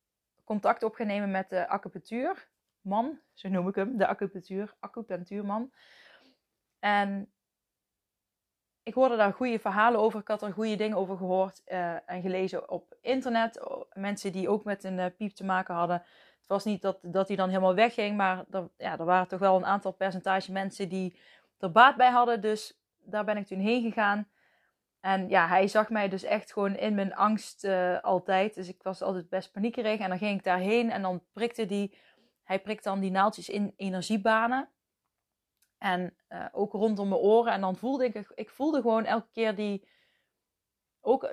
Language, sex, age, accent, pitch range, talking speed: Dutch, female, 20-39, Dutch, 190-220 Hz, 180 wpm